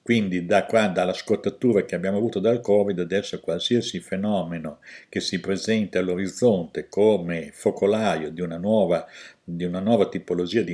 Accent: native